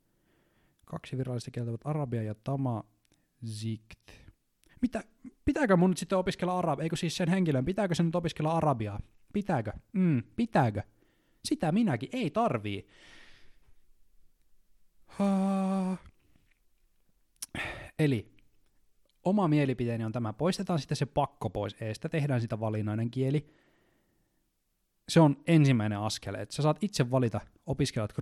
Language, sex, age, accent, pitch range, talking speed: Finnish, male, 20-39, native, 115-170 Hz, 120 wpm